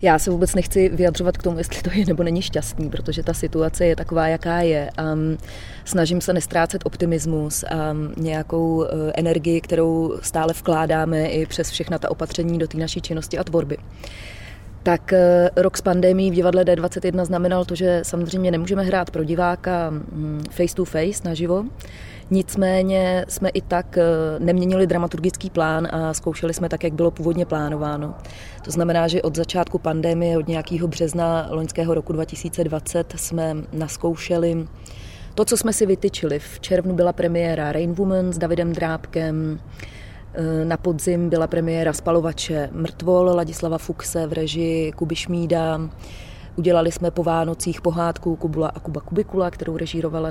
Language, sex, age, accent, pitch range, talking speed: Czech, female, 20-39, native, 160-175 Hz, 150 wpm